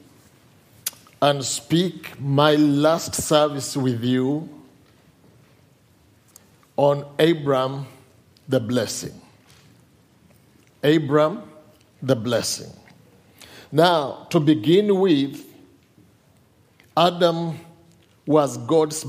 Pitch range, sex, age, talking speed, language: 135-175 Hz, male, 50-69, 65 wpm, English